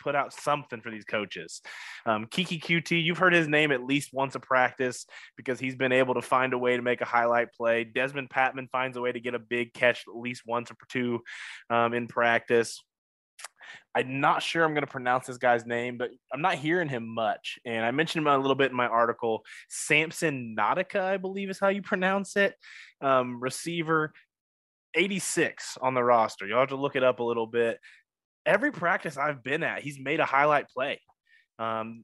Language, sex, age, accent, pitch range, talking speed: English, male, 20-39, American, 120-160 Hz, 205 wpm